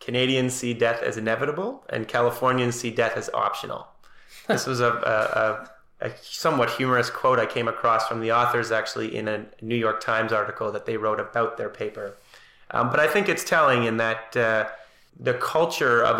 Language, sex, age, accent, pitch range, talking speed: English, male, 30-49, American, 110-125 Hz, 190 wpm